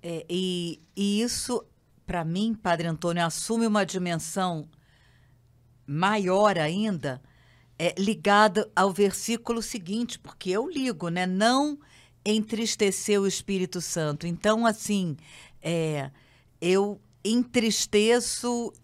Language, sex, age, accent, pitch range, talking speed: Portuguese, female, 50-69, Brazilian, 175-225 Hz, 90 wpm